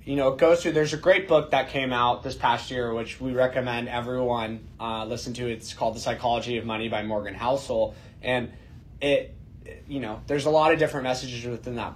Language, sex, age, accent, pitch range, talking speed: English, male, 20-39, American, 120-150 Hz, 220 wpm